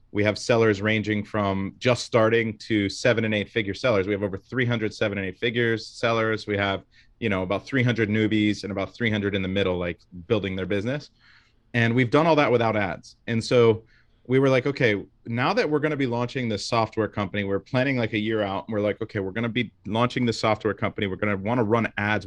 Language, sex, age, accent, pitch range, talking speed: English, male, 30-49, American, 105-120 Hz, 230 wpm